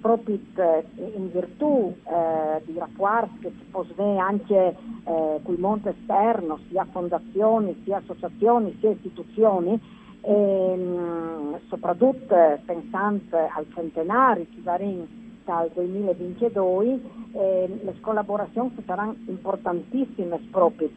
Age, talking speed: 50-69, 100 wpm